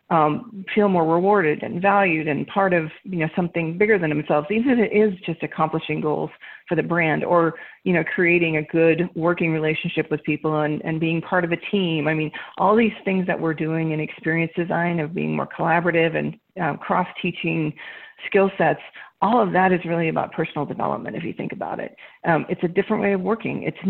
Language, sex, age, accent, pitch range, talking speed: English, female, 40-59, American, 155-180 Hz, 210 wpm